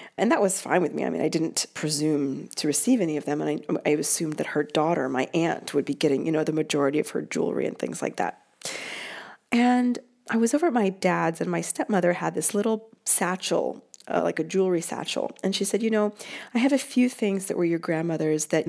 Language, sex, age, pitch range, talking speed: English, female, 40-59, 165-220 Hz, 235 wpm